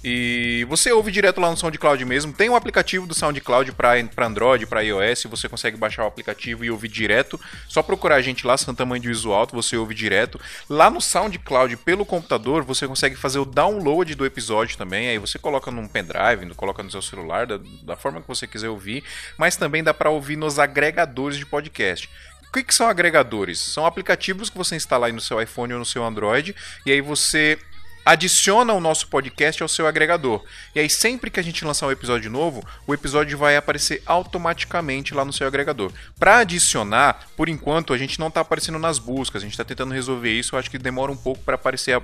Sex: male